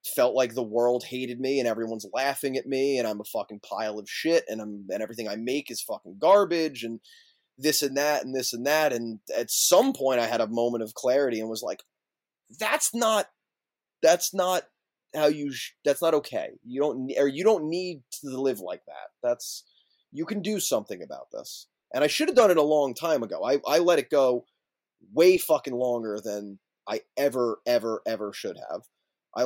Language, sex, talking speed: English, male, 205 wpm